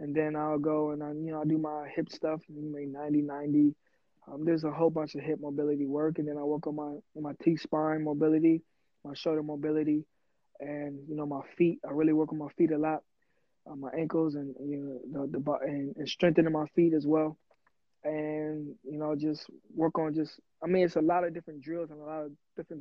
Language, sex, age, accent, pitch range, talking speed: English, male, 20-39, American, 150-160 Hz, 225 wpm